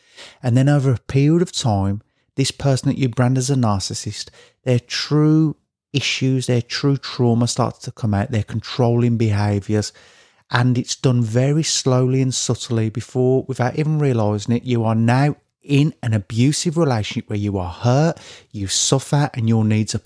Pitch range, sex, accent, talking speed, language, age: 115-140 Hz, male, British, 170 wpm, English, 30-49